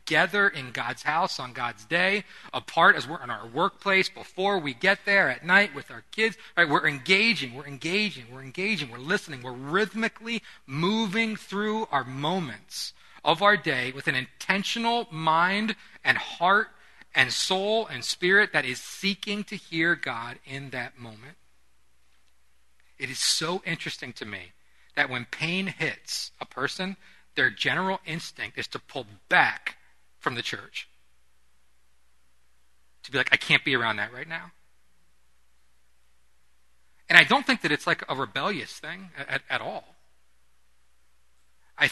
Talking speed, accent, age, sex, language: 145 wpm, American, 40-59, male, English